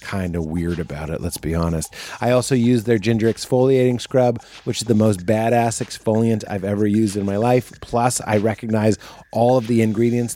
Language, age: English, 30-49